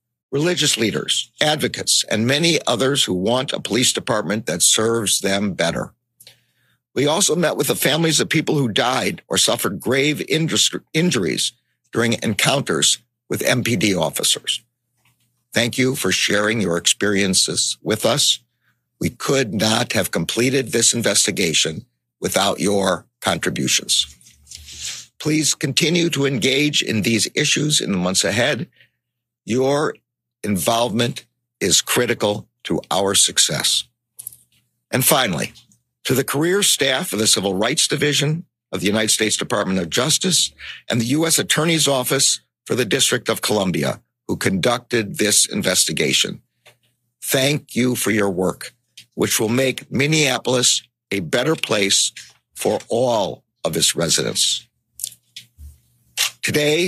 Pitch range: 105-140 Hz